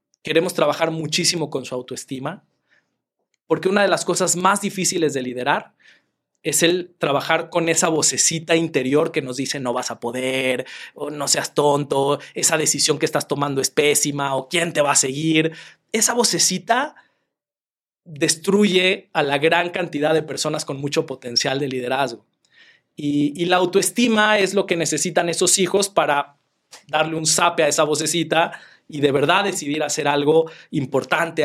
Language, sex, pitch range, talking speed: English, male, 145-190 Hz, 160 wpm